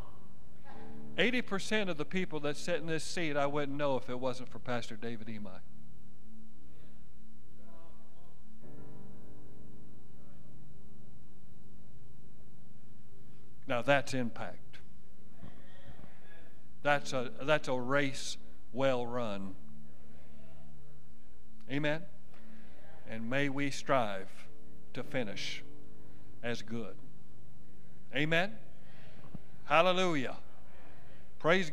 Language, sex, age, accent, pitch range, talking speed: English, male, 50-69, American, 100-145 Hz, 80 wpm